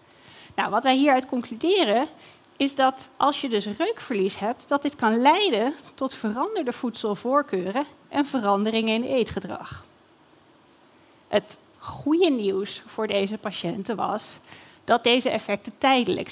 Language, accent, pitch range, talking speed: Dutch, Dutch, 220-300 Hz, 120 wpm